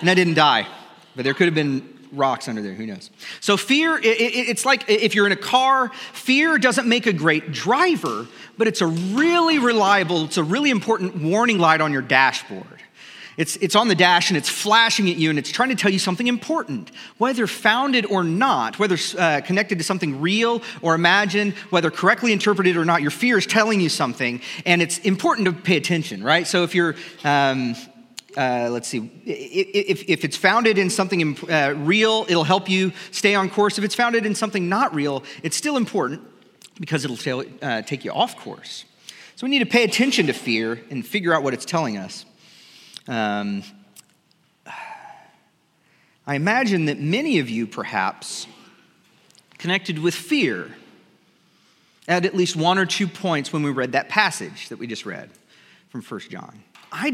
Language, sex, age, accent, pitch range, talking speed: English, male, 40-59, American, 160-225 Hz, 190 wpm